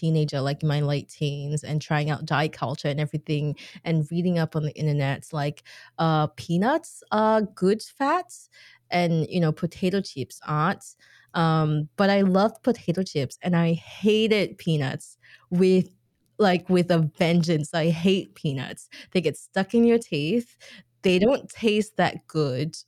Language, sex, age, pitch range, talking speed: English, female, 20-39, 150-185 Hz, 155 wpm